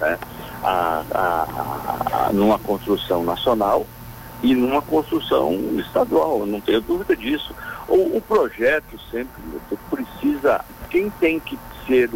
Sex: male